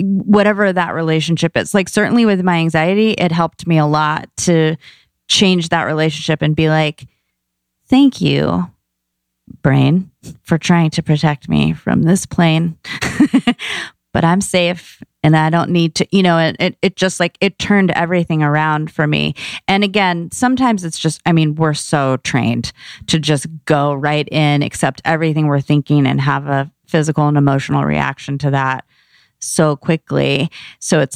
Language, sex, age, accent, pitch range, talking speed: English, female, 30-49, American, 140-170 Hz, 160 wpm